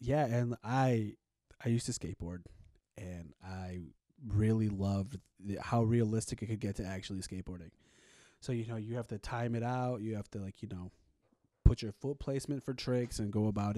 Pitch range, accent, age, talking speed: 100-120 Hz, American, 20-39, 190 wpm